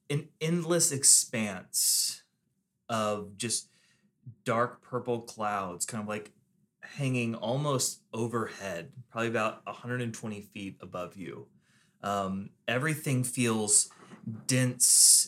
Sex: male